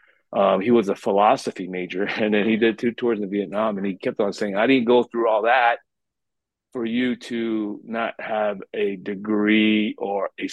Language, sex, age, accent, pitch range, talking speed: English, male, 30-49, American, 100-115 Hz, 195 wpm